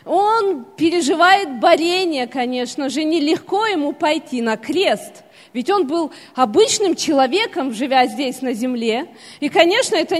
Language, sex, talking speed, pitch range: Russian, female, 130 wpm, 280-400 Hz